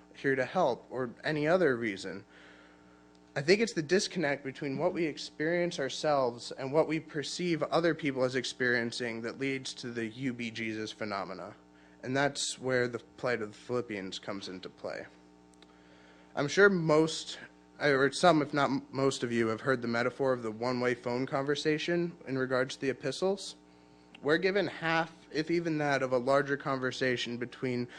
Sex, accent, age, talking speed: male, American, 20-39, 165 wpm